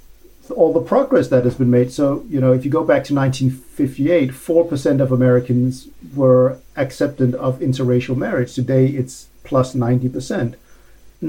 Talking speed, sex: 145 wpm, male